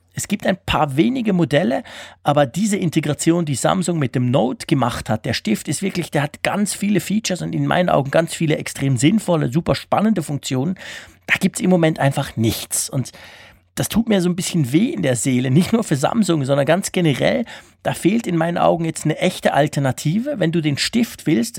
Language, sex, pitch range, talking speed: German, male, 135-180 Hz, 210 wpm